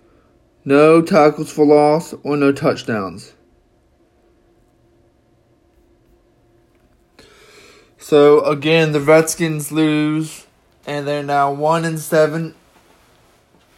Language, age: English, 20-39